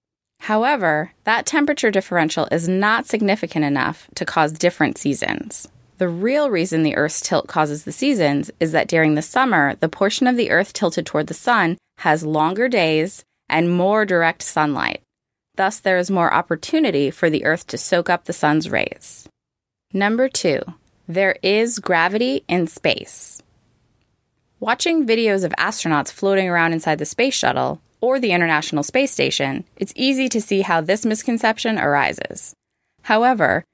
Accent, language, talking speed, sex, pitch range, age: American, English, 155 wpm, female, 160-225 Hz, 20-39